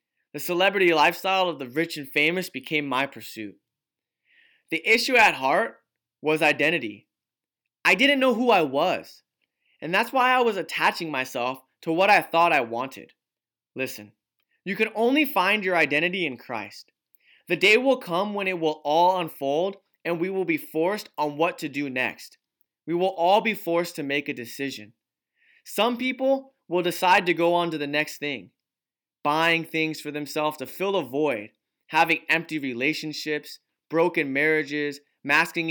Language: English